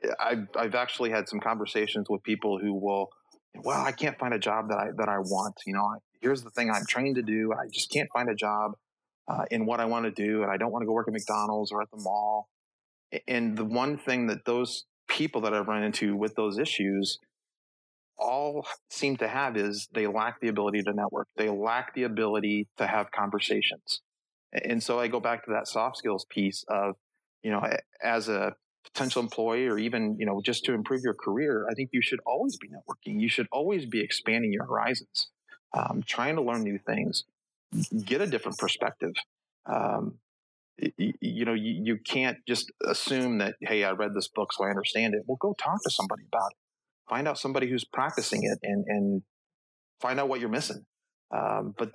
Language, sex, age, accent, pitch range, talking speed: English, male, 30-49, American, 105-125 Hz, 205 wpm